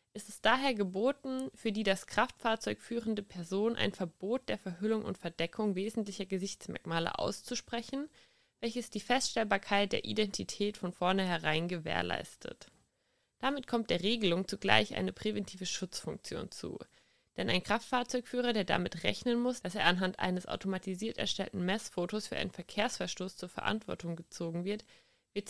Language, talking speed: German, 140 wpm